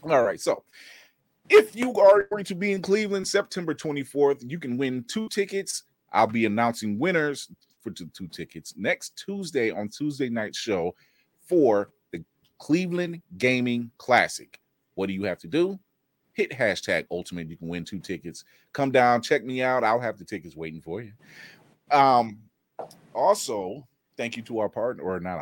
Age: 30-49